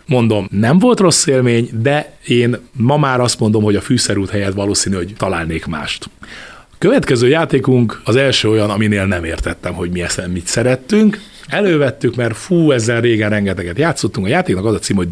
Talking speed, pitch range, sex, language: 185 wpm, 105-135 Hz, male, Hungarian